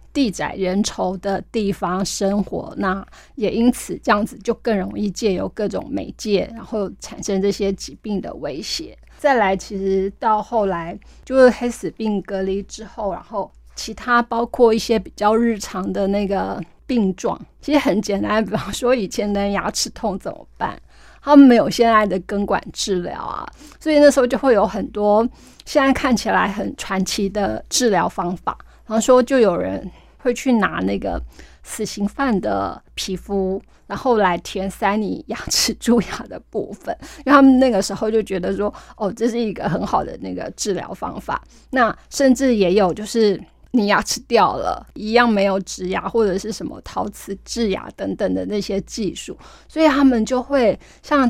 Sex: female